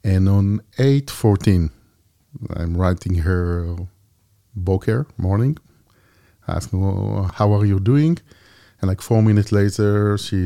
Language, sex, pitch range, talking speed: English, male, 90-105 Hz, 120 wpm